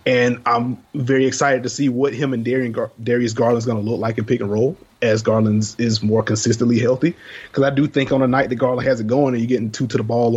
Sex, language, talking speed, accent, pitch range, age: male, English, 260 wpm, American, 120-150 Hz, 30-49